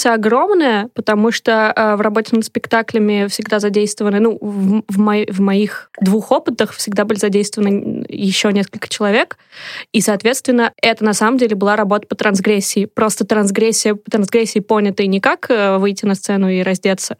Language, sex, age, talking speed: Russian, female, 20-39, 165 wpm